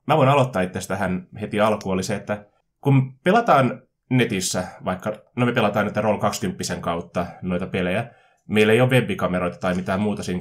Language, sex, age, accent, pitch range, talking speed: Finnish, male, 20-39, native, 90-120 Hz, 180 wpm